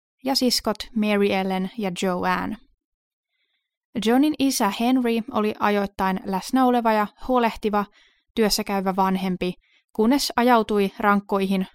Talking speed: 100 wpm